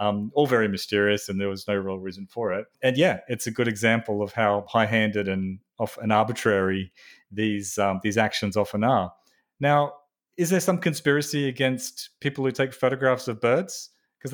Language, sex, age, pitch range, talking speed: English, male, 30-49, 110-140 Hz, 185 wpm